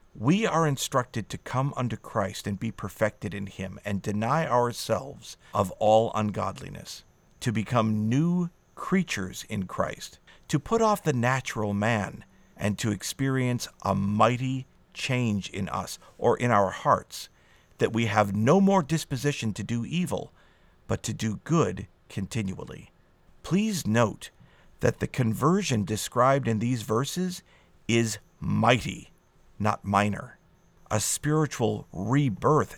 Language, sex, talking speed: English, male, 130 wpm